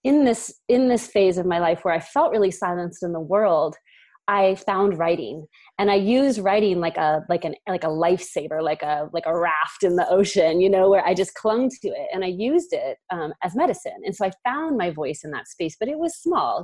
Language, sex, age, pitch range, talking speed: English, female, 30-49, 180-230 Hz, 240 wpm